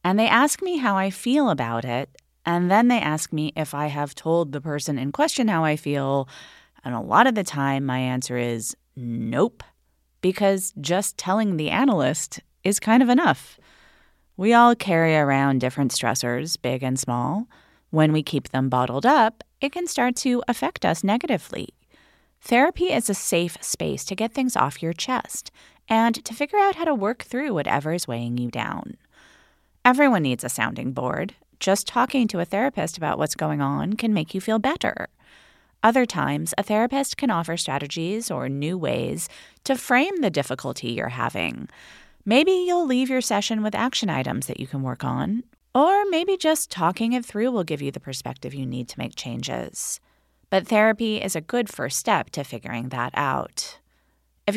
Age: 30-49